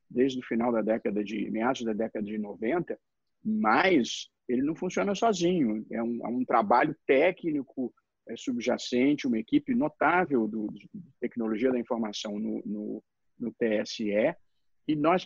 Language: Portuguese